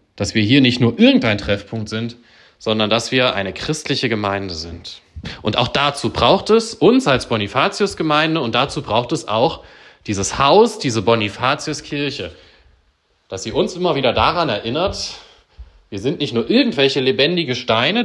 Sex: male